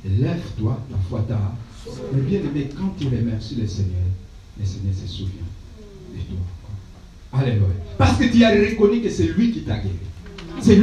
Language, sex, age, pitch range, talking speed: French, male, 60-79, 100-140 Hz, 175 wpm